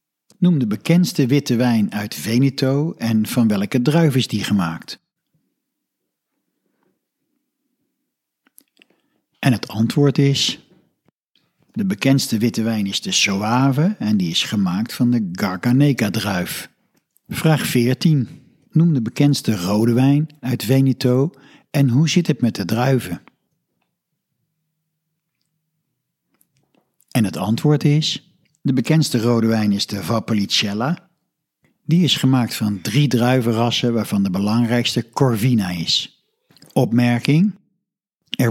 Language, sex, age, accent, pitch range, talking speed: Dutch, male, 60-79, Dutch, 115-155 Hz, 110 wpm